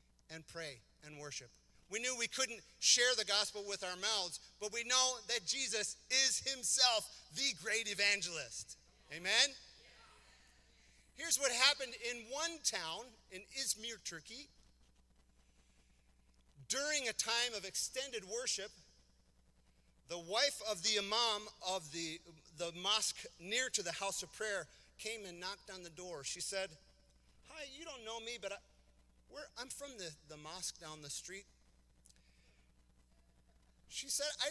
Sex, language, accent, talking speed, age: male, English, American, 140 wpm, 40-59